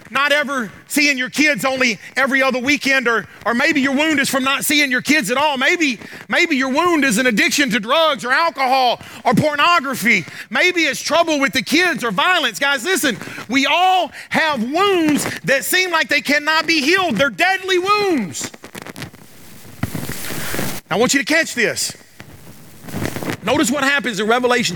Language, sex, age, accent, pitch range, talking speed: English, male, 40-59, American, 190-285 Hz, 170 wpm